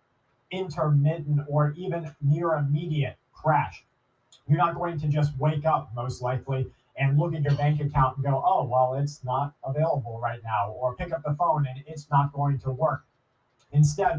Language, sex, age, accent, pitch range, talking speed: English, male, 30-49, American, 130-155 Hz, 180 wpm